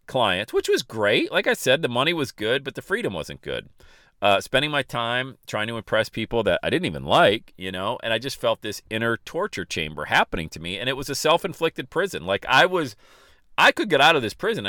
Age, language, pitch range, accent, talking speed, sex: 40-59, English, 85-120 Hz, American, 235 wpm, male